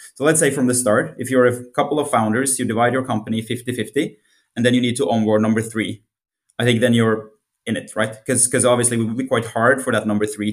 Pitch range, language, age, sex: 105-125 Hz, German, 20-39, male